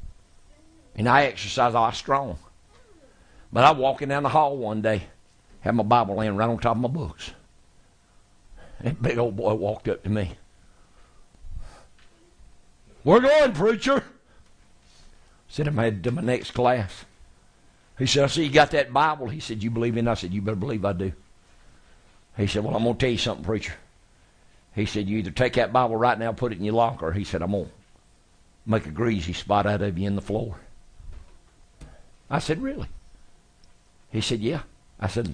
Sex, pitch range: male, 90-115 Hz